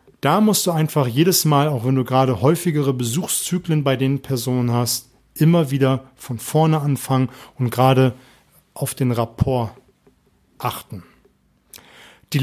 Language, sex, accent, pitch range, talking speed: German, male, German, 125-155 Hz, 135 wpm